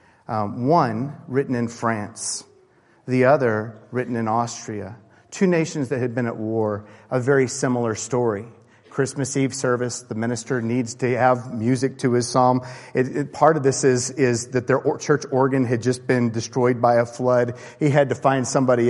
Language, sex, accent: English, male, American